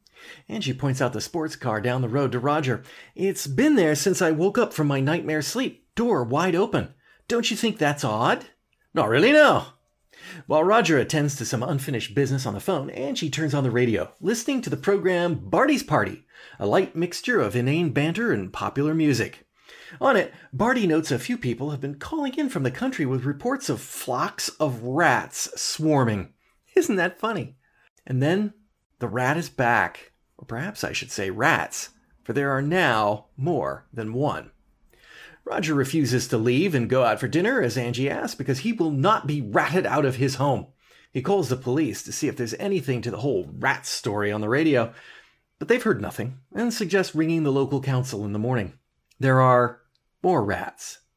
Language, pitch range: English, 125-170 Hz